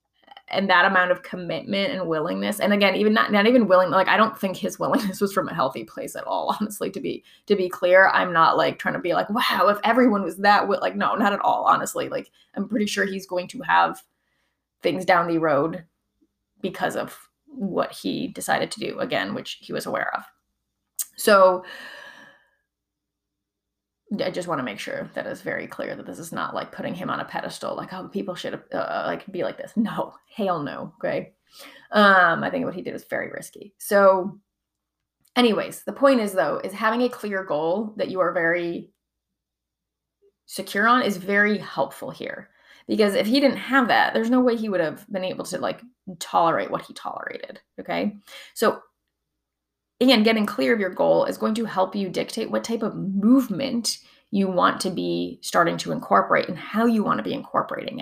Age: 20-39